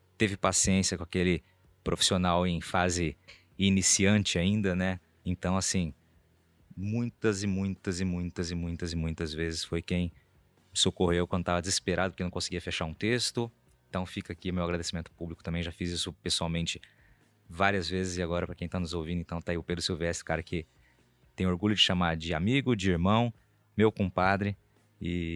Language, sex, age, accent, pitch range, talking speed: Portuguese, male, 20-39, Brazilian, 85-95 Hz, 175 wpm